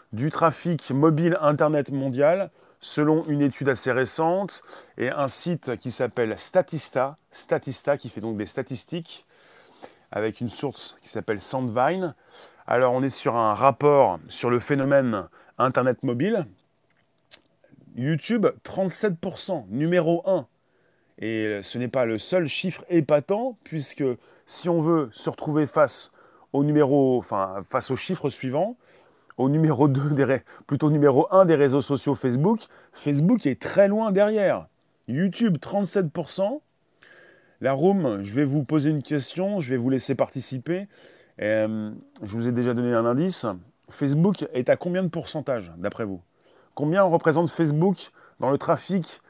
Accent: French